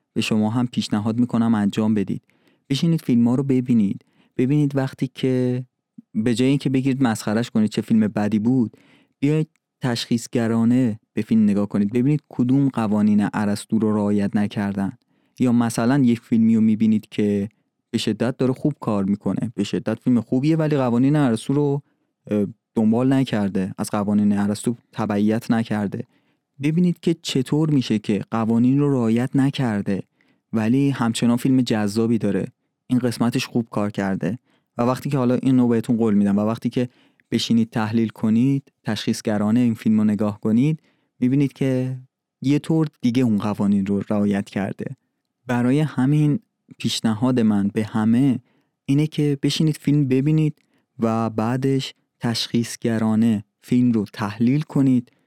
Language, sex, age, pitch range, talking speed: Persian, male, 30-49, 110-135 Hz, 150 wpm